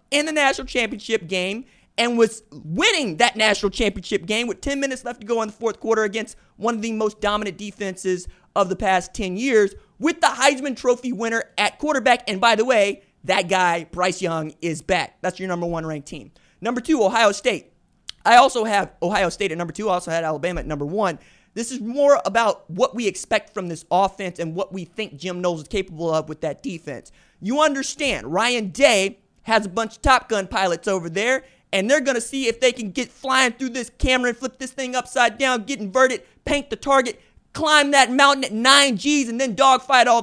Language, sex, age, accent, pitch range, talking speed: English, male, 20-39, American, 185-245 Hz, 215 wpm